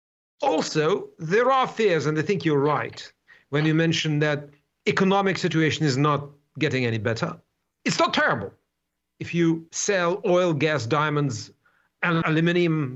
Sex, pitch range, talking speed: male, 145-190 Hz, 145 wpm